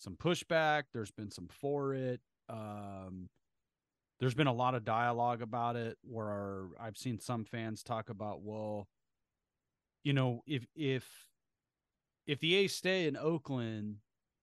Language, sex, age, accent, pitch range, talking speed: English, male, 30-49, American, 100-125 Hz, 145 wpm